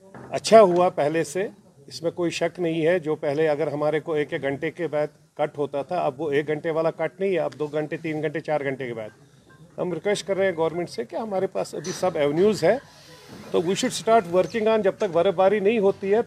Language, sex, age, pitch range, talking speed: Urdu, male, 40-59, 145-185 Hz, 240 wpm